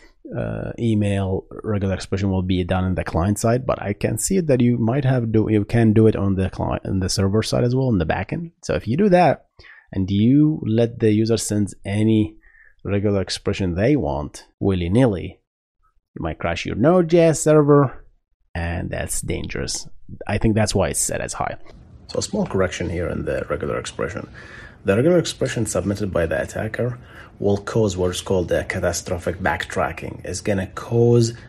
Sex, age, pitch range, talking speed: male, 30-49, 95-120 Hz, 185 wpm